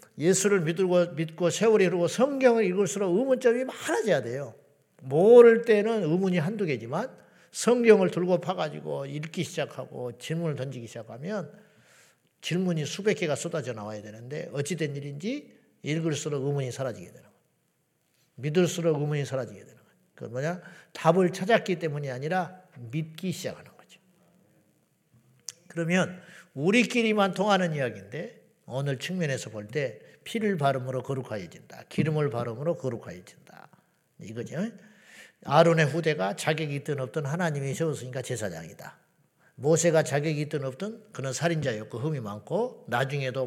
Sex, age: male, 50-69